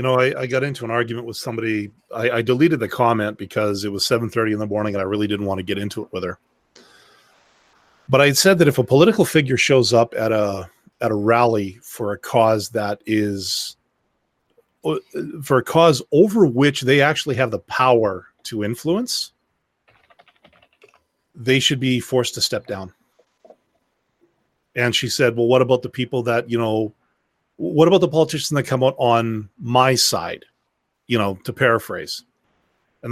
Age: 30-49